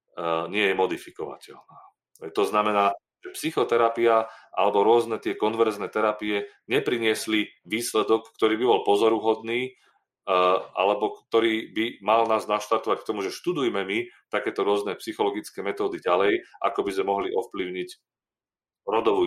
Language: Slovak